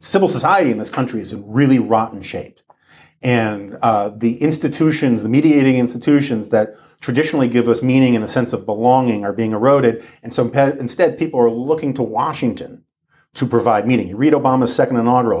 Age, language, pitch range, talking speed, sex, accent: 40-59, English, 115-140 Hz, 180 wpm, male, American